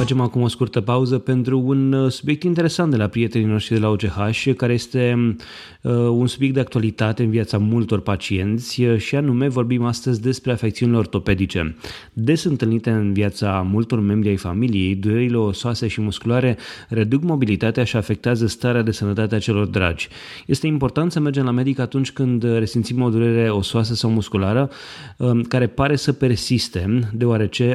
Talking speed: 160 wpm